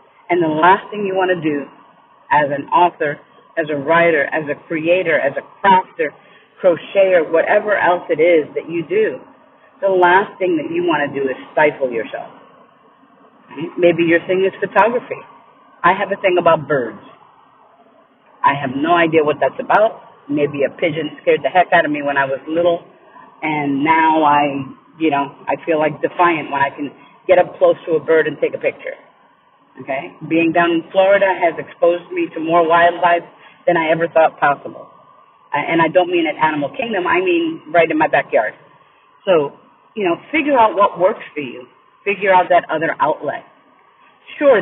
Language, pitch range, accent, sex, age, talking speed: English, 160-215 Hz, American, female, 40-59, 185 wpm